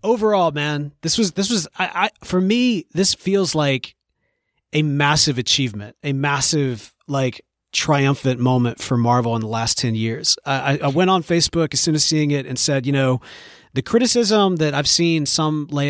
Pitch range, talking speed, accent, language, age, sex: 125-155 Hz, 185 wpm, American, English, 30-49, male